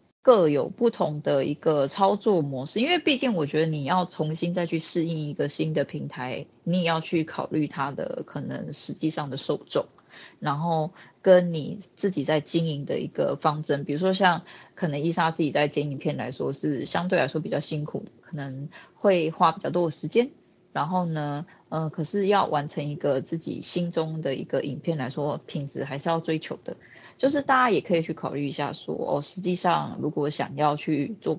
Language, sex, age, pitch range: Chinese, female, 20-39, 150-195 Hz